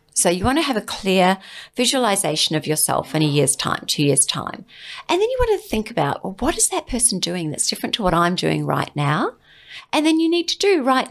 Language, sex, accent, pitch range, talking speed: English, female, Australian, 145-245 Hz, 245 wpm